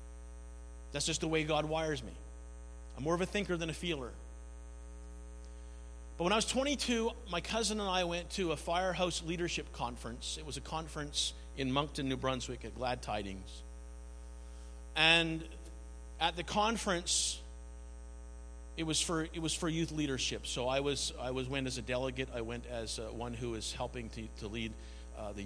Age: 50-69